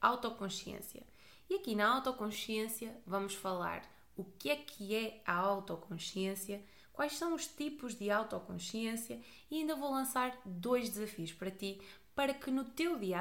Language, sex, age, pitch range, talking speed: Portuguese, female, 20-39, 195-255 Hz, 150 wpm